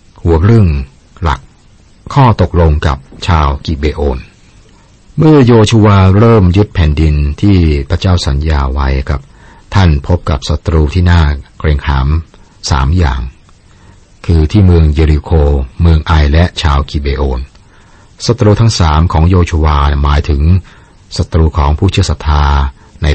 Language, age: Thai, 60-79